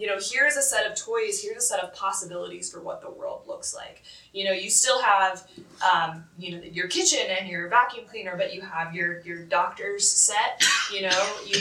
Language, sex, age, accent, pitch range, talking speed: English, female, 20-39, American, 185-245 Hz, 215 wpm